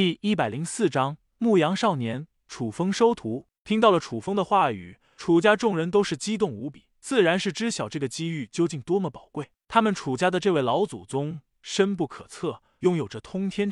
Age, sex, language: 20-39, male, Chinese